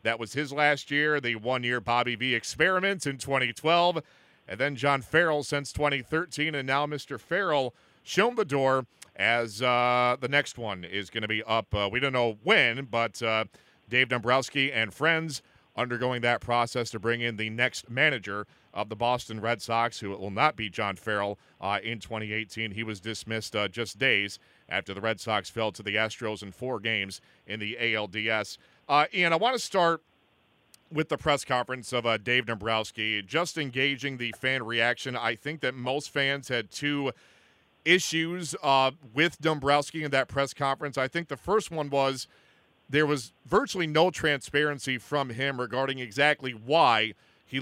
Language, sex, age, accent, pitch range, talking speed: English, male, 40-59, American, 115-145 Hz, 180 wpm